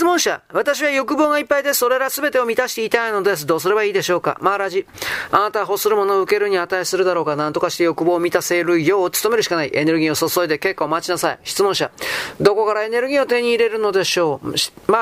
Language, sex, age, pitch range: Japanese, male, 40-59, 180-280 Hz